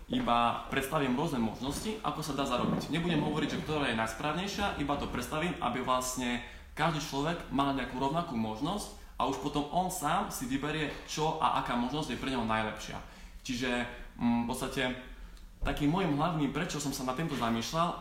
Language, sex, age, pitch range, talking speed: Slovak, male, 20-39, 120-145 Hz, 175 wpm